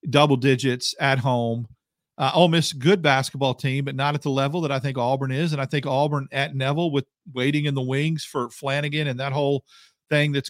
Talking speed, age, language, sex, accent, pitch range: 215 wpm, 40-59, English, male, American, 135-170 Hz